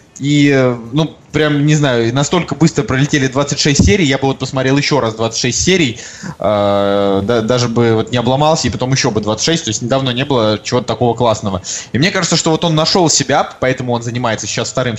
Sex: male